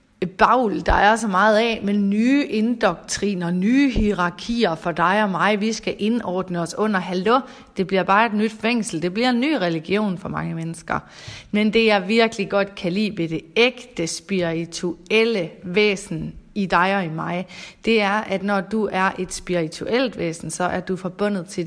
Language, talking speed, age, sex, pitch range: Danish, 185 wpm, 30-49, female, 180-220 Hz